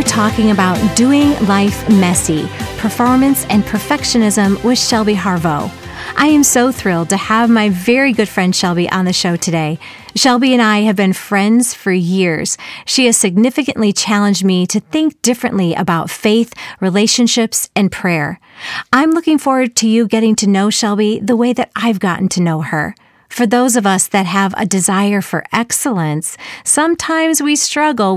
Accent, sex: American, female